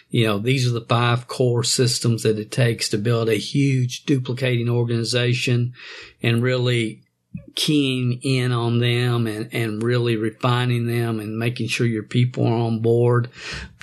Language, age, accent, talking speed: English, 50-69, American, 160 wpm